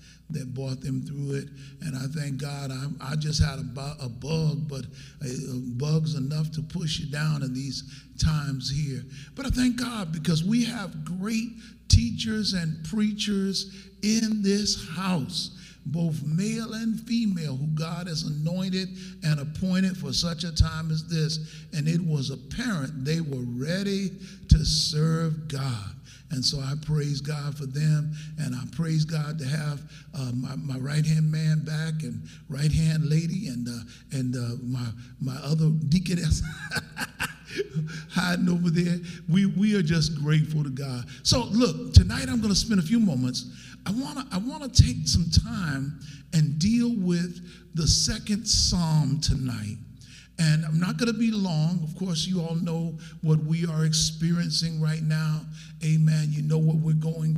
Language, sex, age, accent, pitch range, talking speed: English, male, 50-69, American, 145-170 Hz, 160 wpm